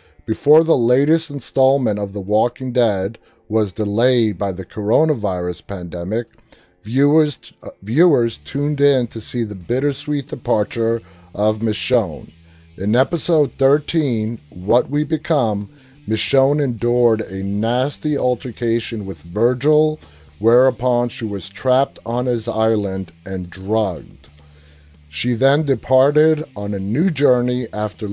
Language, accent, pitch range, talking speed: English, American, 100-130 Hz, 120 wpm